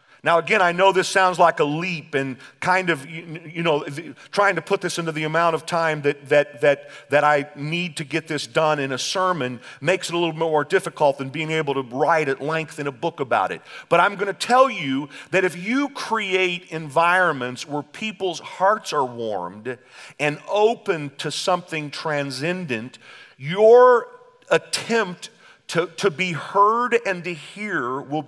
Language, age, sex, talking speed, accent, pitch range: English, 40-59, male, 180 wpm, American, 150-185 Hz